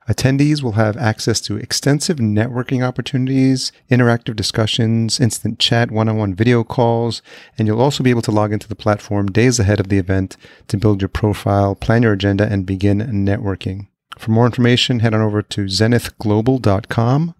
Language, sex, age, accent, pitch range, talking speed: English, male, 40-59, American, 105-120 Hz, 170 wpm